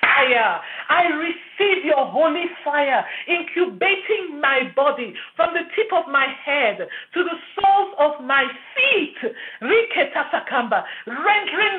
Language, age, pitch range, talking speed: English, 50-69, 285-370 Hz, 105 wpm